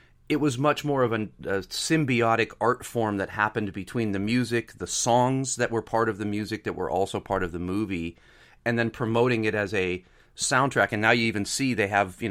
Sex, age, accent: male, 30-49, American